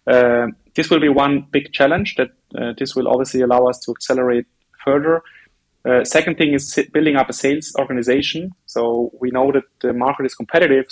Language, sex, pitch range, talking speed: English, male, 125-140 Hz, 185 wpm